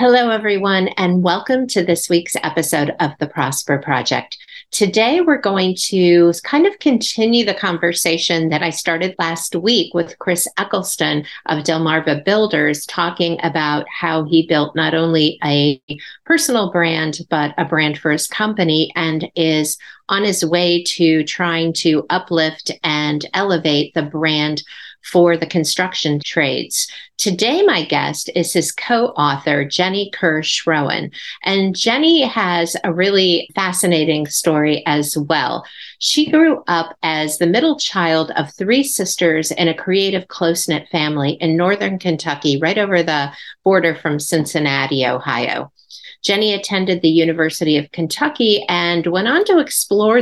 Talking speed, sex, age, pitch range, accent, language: 140 wpm, female, 50-69, 155-195 Hz, American, English